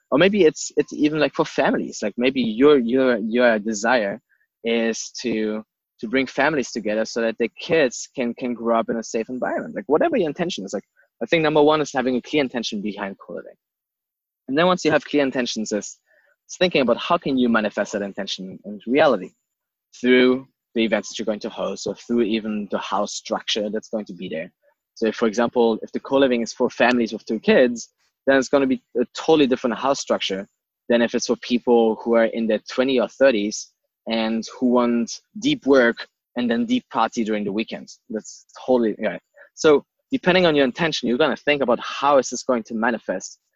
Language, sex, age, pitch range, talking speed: English, male, 20-39, 115-135 Hz, 210 wpm